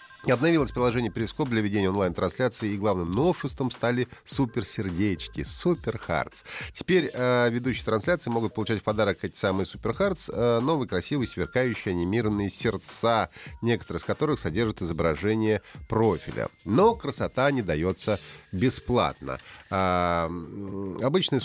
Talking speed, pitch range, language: 125 wpm, 100-140 Hz, Russian